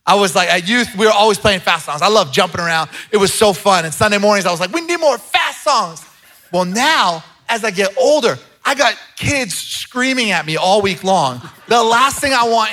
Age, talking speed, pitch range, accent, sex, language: 30-49, 235 wpm, 170-220 Hz, American, male, English